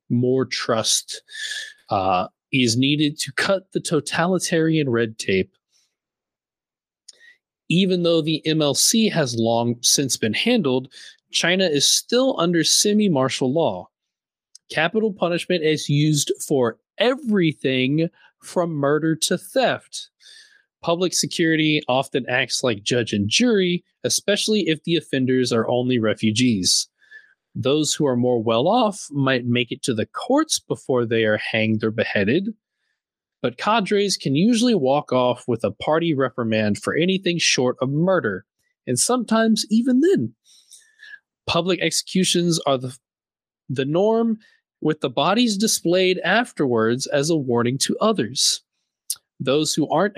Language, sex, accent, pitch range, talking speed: English, male, American, 130-205 Hz, 125 wpm